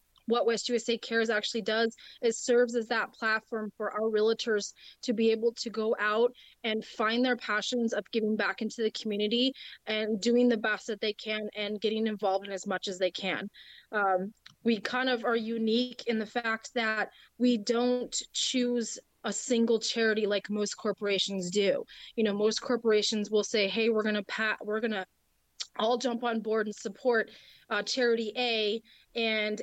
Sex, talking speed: female, 180 wpm